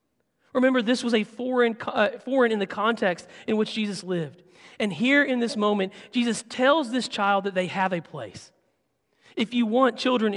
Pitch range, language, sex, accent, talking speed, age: 170-220 Hz, English, male, American, 185 wpm, 40-59